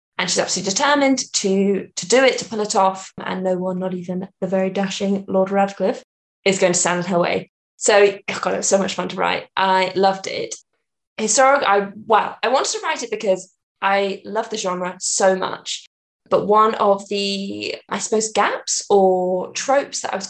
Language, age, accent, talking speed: English, 10-29, British, 205 wpm